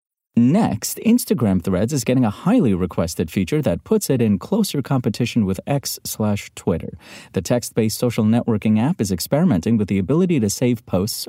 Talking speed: 170 wpm